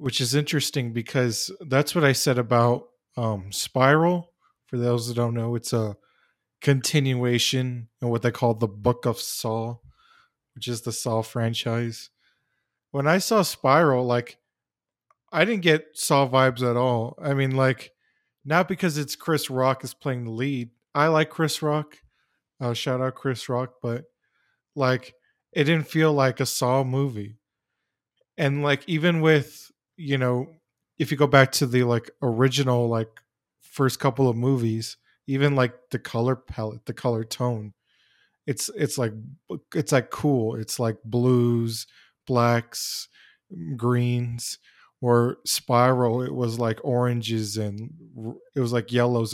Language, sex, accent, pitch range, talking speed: English, male, American, 120-145 Hz, 150 wpm